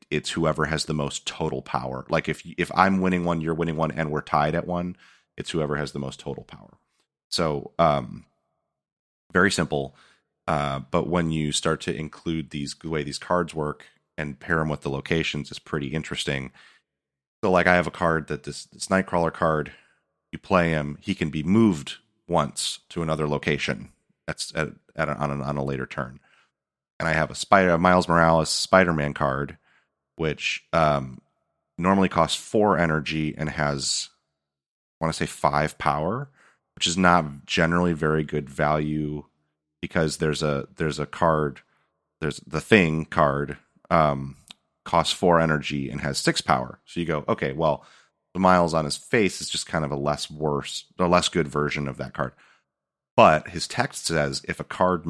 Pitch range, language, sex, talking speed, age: 70-85 Hz, English, male, 180 wpm, 30-49